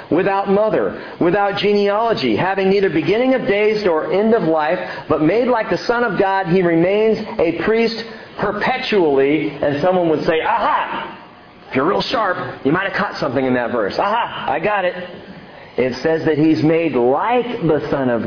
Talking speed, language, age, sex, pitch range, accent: 180 wpm, English, 40-59, male, 140-200 Hz, American